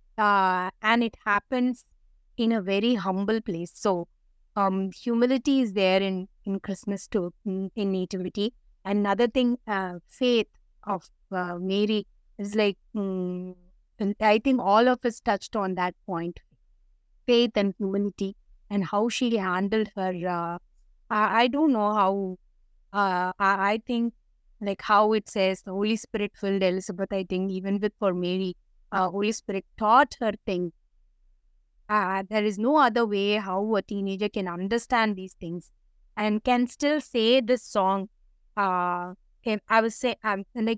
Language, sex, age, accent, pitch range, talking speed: Tamil, female, 20-39, native, 195-230 Hz, 155 wpm